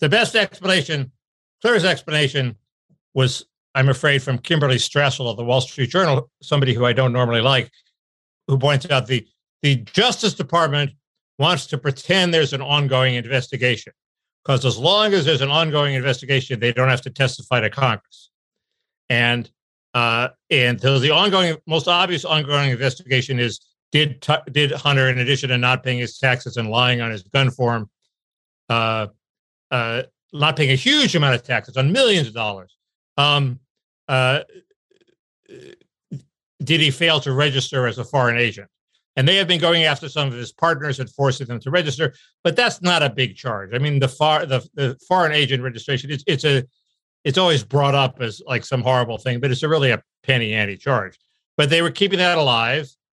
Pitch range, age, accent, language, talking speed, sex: 125-155 Hz, 60-79, American, English, 175 wpm, male